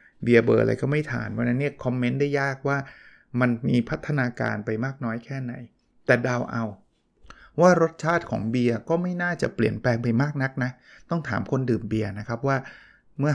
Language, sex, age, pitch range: Thai, male, 20-39, 115-145 Hz